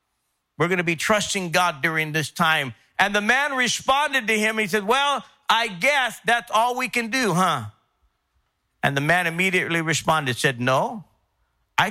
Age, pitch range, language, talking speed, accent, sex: 50-69, 155-215 Hz, English, 170 wpm, American, male